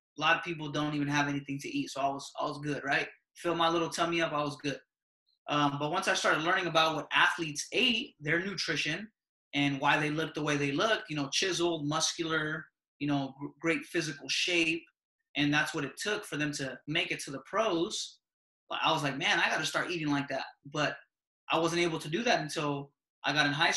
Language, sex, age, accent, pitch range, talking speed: English, male, 20-39, American, 140-165 Hz, 225 wpm